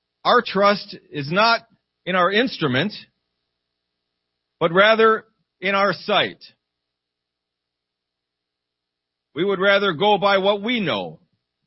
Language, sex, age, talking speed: English, male, 40-59, 105 wpm